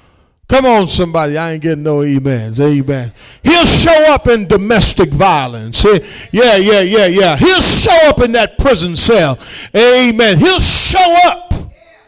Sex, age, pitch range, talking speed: male, 40-59, 165-255 Hz, 150 wpm